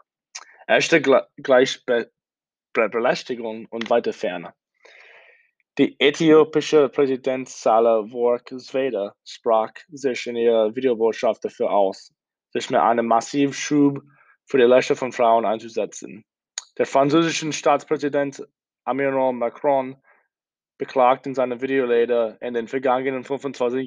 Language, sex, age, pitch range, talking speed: German, male, 20-39, 120-140 Hz, 110 wpm